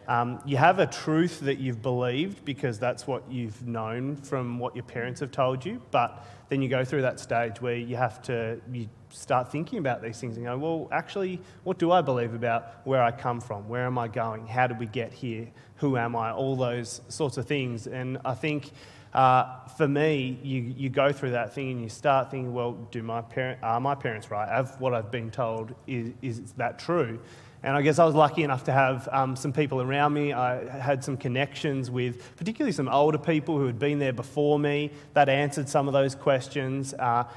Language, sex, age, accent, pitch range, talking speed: English, male, 30-49, Australian, 120-145 Hz, 220 wpm